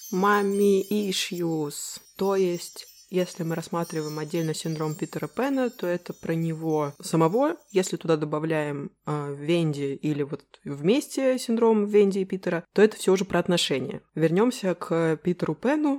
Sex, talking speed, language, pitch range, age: female, 145 wpm, Russian, 150-200 Hz, 20-39